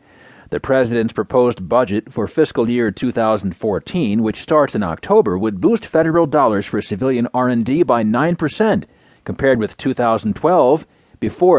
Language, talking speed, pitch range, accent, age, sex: English, 130 wpm, 115-155 Hz, American, 40-59, male